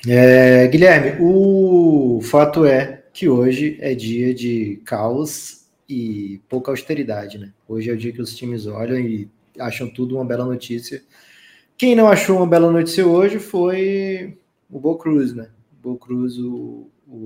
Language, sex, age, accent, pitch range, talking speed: Portuguese, male, 20-39, Brazilian, 115-170 Hz, 160 wpm